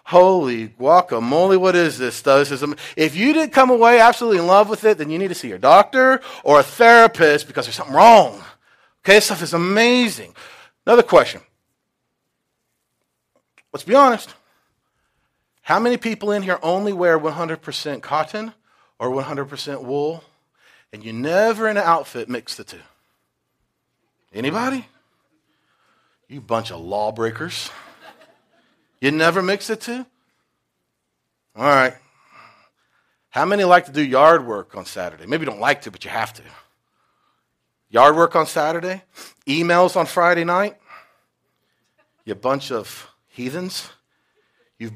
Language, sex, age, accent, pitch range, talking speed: English, male, 40-59, American, 140-215 Hz, 140 wpm